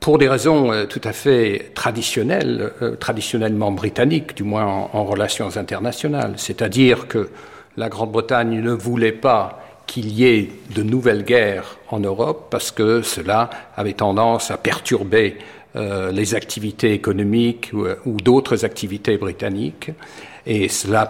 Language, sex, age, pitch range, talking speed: French, male, 60-79, 105-130 Hz, 140 wpm